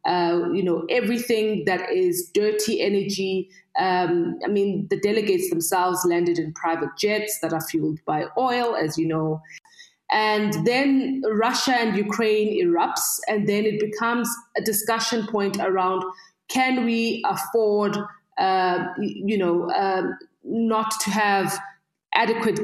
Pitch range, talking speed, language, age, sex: 185-230 Hz, 135 wpm, English, 20-39, female